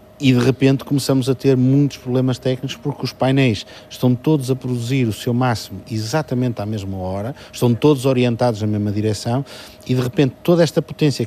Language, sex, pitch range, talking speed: Portuguese, male, 110-135 Hz, 185 wpm